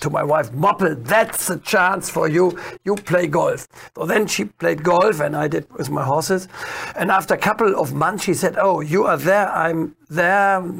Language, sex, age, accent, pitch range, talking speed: English, male, 60-79, German, 175-235 Hz, 205 wpm